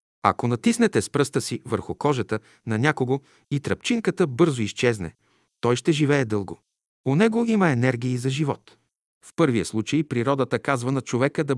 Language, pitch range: Bulgarian, 115-155 Hz